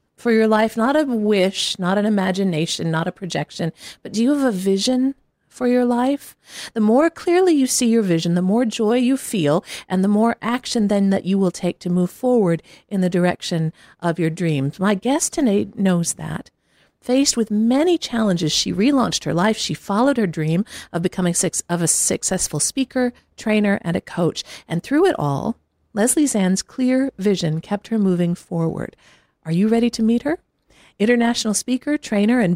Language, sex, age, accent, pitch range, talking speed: English, female, 50-69, American, 175-240 Hz, 185 wpm